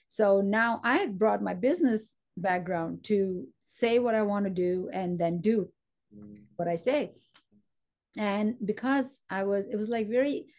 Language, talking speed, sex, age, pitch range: English, 160 wpm, female, 30-49, 195-250 Hz